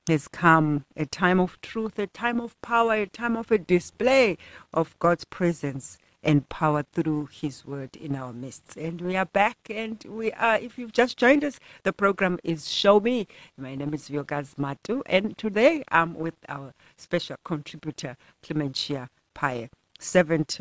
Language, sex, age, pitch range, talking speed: English, female, 60-79, 145-205 Hz, 170 wpm